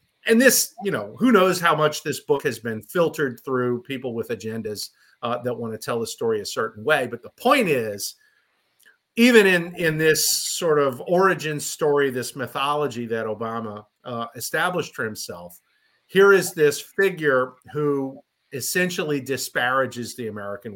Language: English